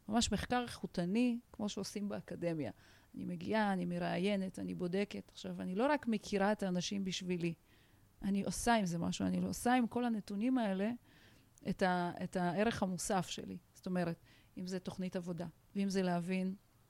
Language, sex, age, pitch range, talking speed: Hebrew, female, 30-49, 170-205 Hz, 155 wpm